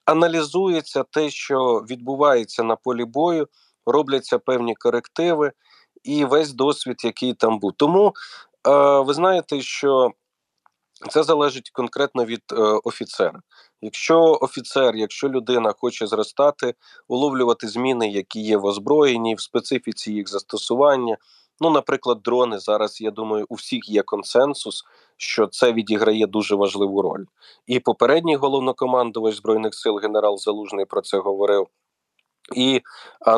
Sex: male